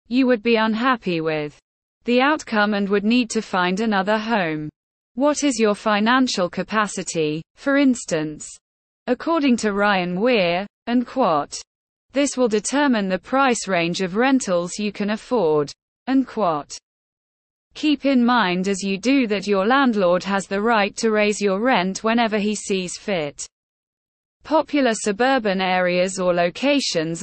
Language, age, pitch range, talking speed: English, 20-39, 185-250 Hz, 145 wpm